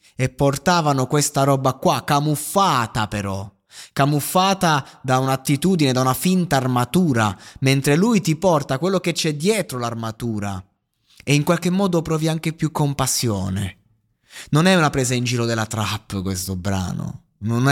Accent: native